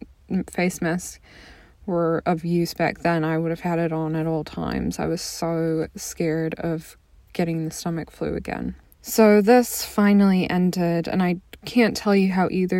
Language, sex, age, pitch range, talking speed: English, female, 20-39, 170-195 Hz, 175 wpm